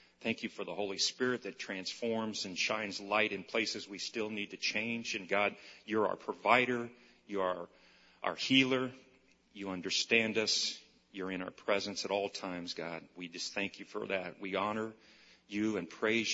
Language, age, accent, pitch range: English, 40-59, American, 90-115 Hz